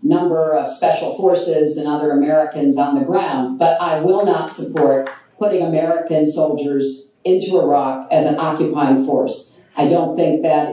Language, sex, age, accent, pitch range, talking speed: English, female, 50-69, American, 150-175 Hz, 155 wpm